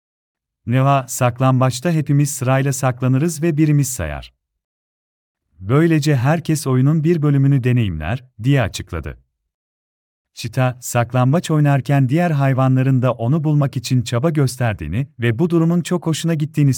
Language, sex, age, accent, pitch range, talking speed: Turkish, male, 40-59, native, 85-145 Hz, 120 wpm